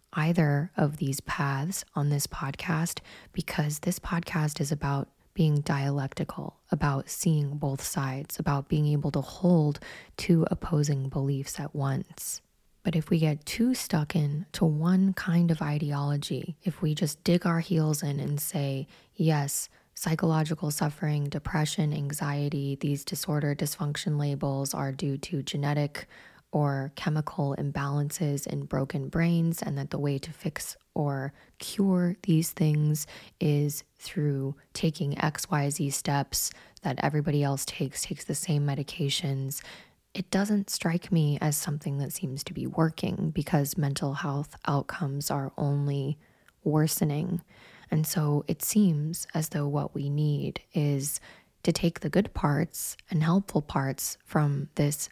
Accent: American